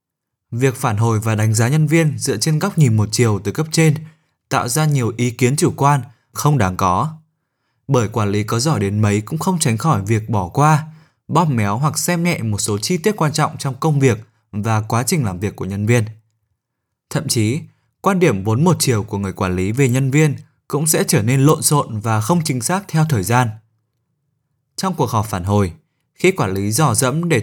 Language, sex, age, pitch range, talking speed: Vietnamese, male, 20-39, 110-155 Hz, 220 wpm